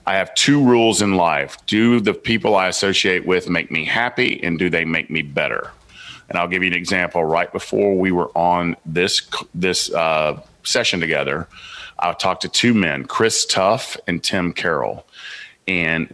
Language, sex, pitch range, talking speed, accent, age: English, male, 80-95 Hz, 180 wpm, American, 40-59